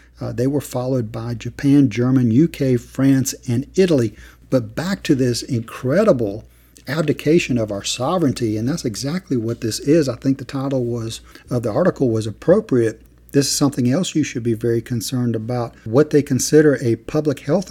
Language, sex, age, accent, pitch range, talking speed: English, male, 50-69, American, 120-155 Hz, 175 wpm